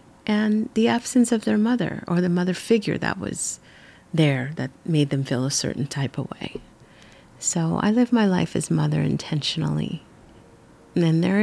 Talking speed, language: 175 wpm, English